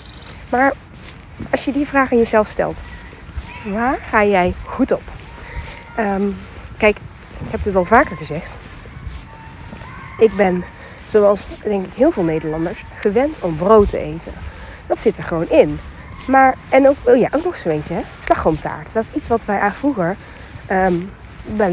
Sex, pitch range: female, 165-230 Hz